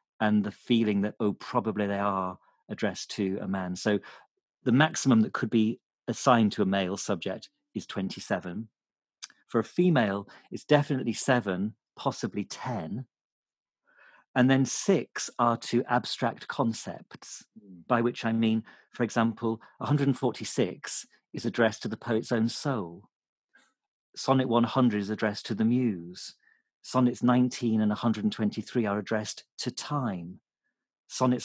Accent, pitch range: British, 105-125 Hz